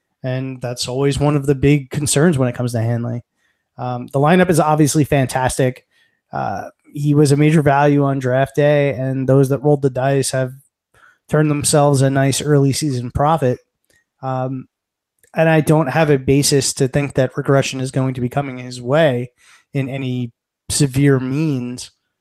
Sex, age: male, 20-39